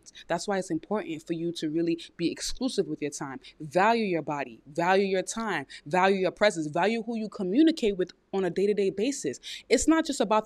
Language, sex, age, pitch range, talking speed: English, female, 20-39, 170-220 Hz, 200 wpm